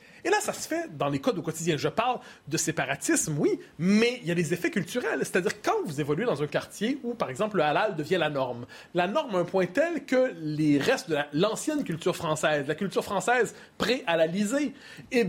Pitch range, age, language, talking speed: 160-245 Hz, 30-49, French, 220 wpm